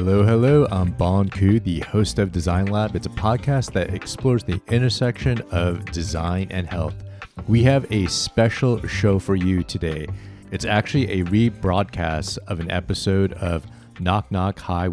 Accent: American